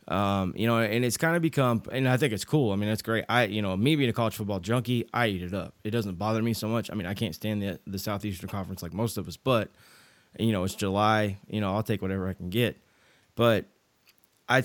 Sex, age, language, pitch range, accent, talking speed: male, 20-39, English, 105-120 Hz, American, 260 wpm